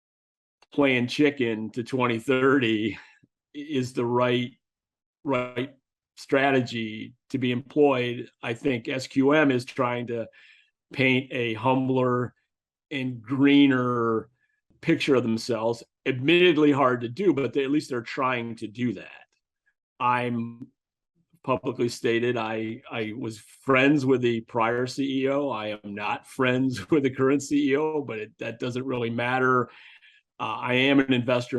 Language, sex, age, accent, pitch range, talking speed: English, male, 40-59, American, 120-140 Hz, 125 wpm